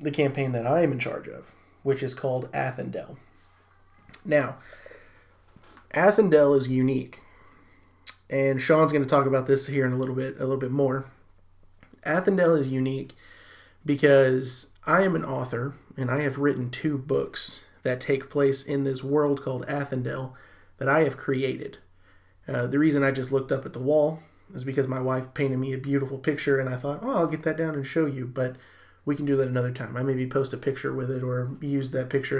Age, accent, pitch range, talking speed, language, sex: 30-49, American, 125-140 Hz, 195 wpm, English, male